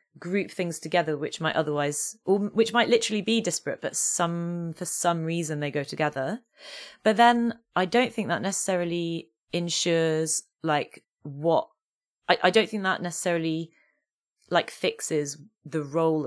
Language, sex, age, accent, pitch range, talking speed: English, female, 30-49, British, 150-195 Hz, 150 wpm